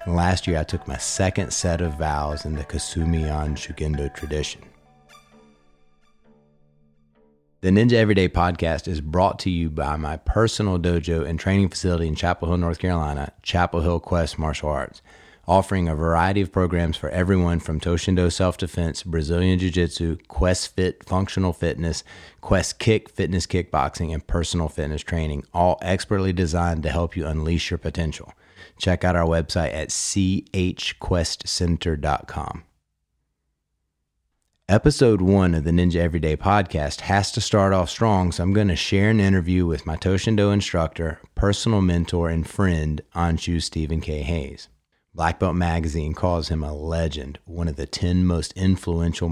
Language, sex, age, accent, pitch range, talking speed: English, male, 30-49, American, 80-90 Hz, 150 wpm